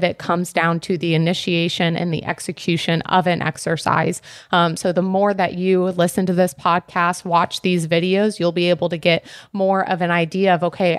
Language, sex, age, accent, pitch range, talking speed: English, female, 30-49, American, 170-195 Hz, 195 wpm